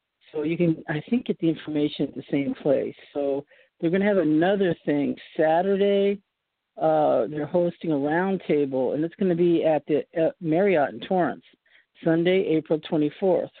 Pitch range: 145-175 Hz